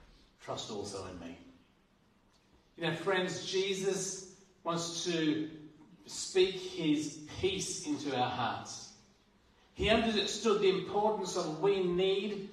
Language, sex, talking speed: English, male, 110 wpm